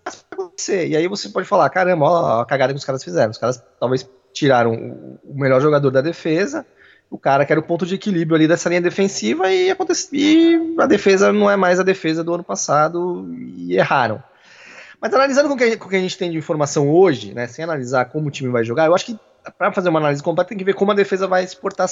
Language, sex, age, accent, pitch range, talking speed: Portuguese, male, 20-39, Brazilian, 125-185 Hz, 240 wpm